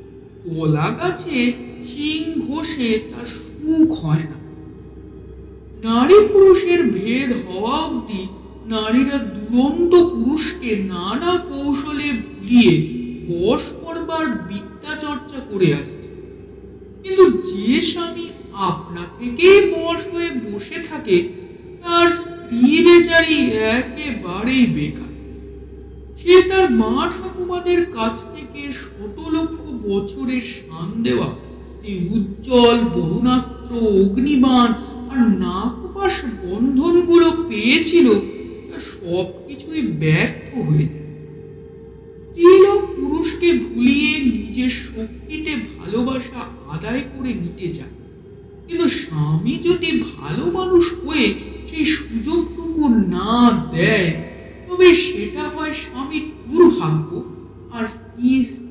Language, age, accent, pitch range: Bengali, 50-69, native, 200-330 Hz